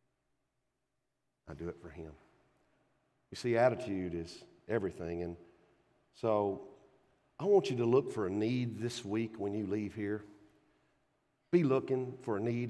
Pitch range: 85-115 Hz